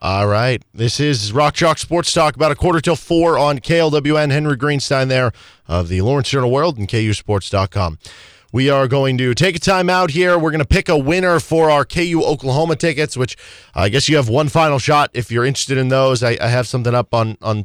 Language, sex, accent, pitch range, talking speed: English, male, American, 110-150 Hz, 220 wpm